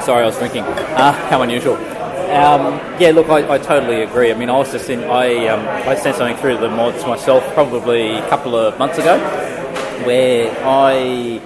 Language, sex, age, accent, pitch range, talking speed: English, male, 20-39, Australian, 115-145 Hz, 200 wpm